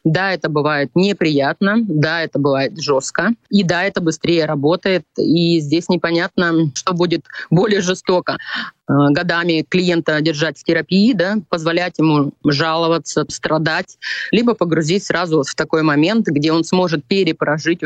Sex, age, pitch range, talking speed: female, 20-39, 150-175 Hz, 135 wpm